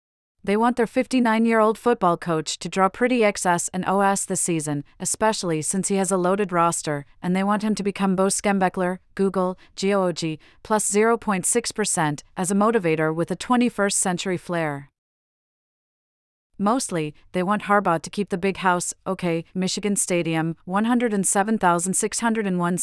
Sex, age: female, 40-59